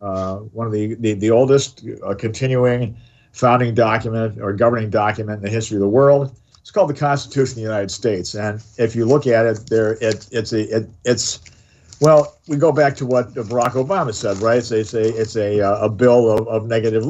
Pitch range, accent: 115-140 Hz, American